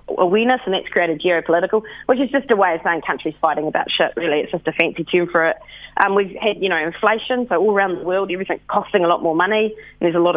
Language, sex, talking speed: English, female, 260 wpm